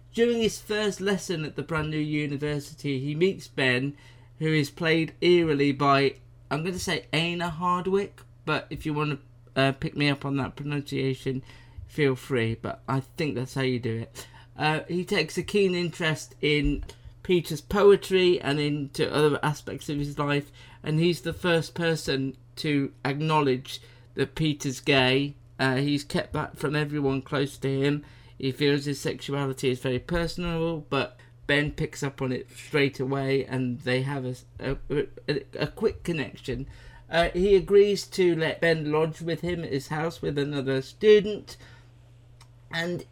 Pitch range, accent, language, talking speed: 130-165 Hz, British, English, 165 wpm